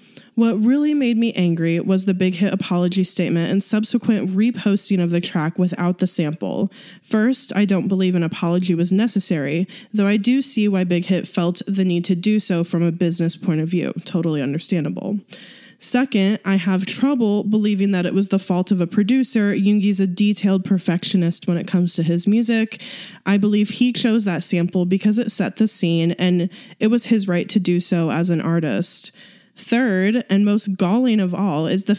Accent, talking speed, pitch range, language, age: American, 190 wpm, 180-220 Hz, English, 10-29